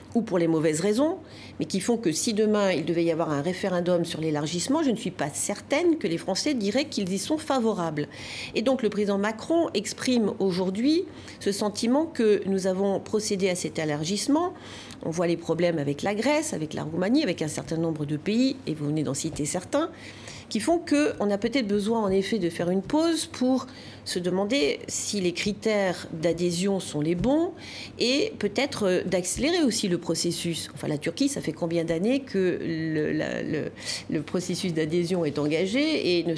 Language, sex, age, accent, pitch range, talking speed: French, female, 40-59, French, 170-230 Hz, 190 wpm